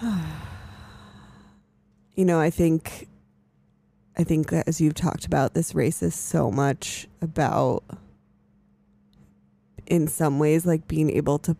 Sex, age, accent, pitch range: female, 20-39, American, 105-170 Hz